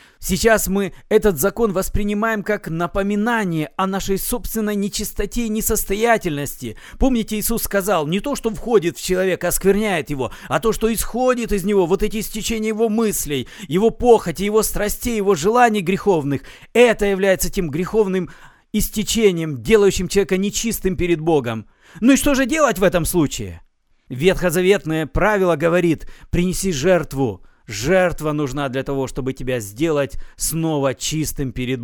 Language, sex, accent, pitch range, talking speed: Russian, male, native, 160-220 Hz, 140 wpm